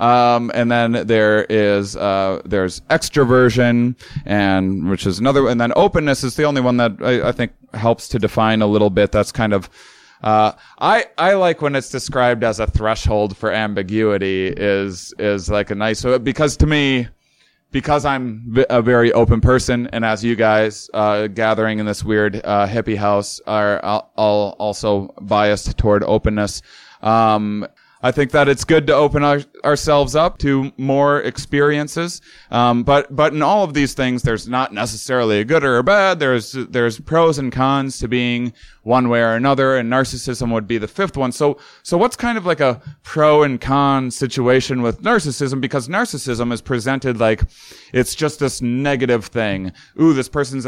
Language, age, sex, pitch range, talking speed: English, 20-39, male, 110-140 Hz, 180 wpm